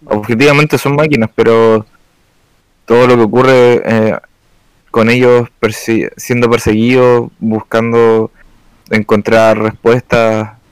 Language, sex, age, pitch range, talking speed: Spanish, male, 20-39, 115-130 Hz, 95 wpm